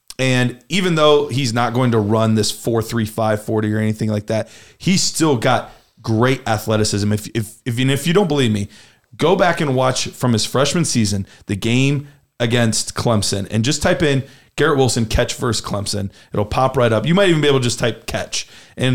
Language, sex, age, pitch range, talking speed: English, male, 30-49, 110-130 Hz, 190 wpm